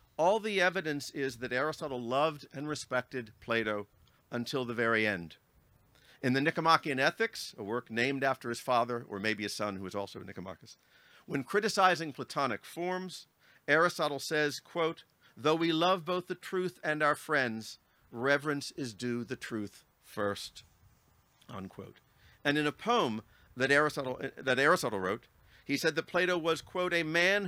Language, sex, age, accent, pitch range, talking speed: English, male, 50-69, American, 120-165 Hz, 155 wpm